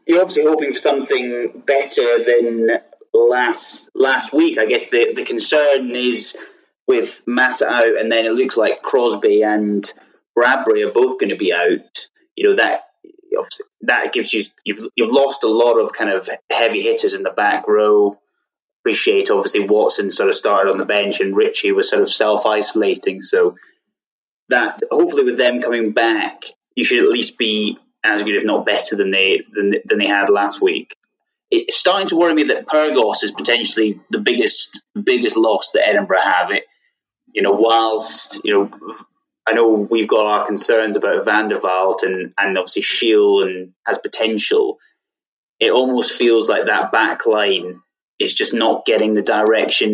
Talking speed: 175 wpm